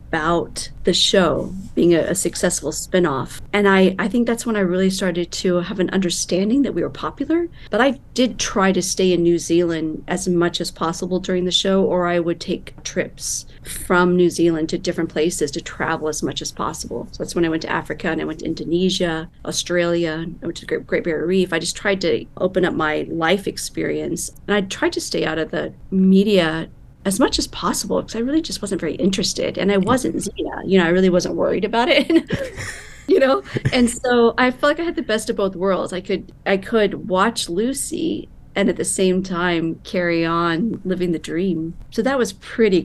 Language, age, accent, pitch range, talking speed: English, 40-59, American, 165-200 Hz, 215 wpm